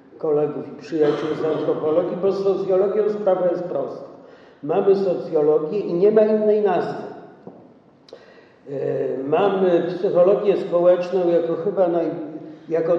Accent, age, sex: native, 50-69, male